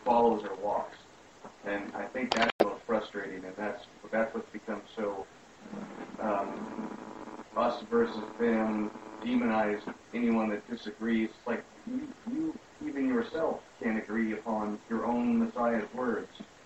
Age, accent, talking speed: 40-59, American, 125 wpm